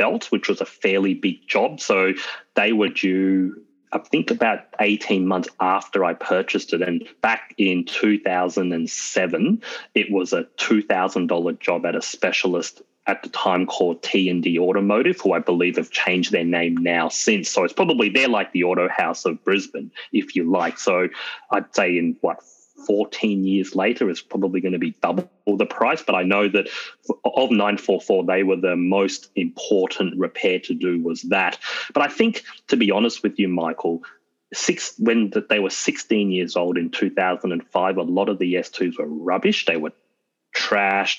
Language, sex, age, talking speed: English, male, 30-49, 170 wpm